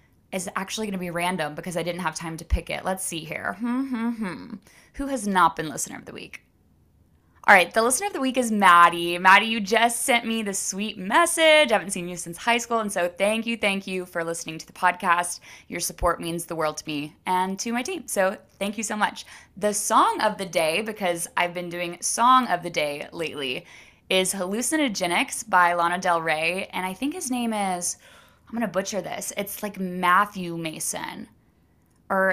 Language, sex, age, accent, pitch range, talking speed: English, female, 20-39, American, 175-220 Hz, 215 wpm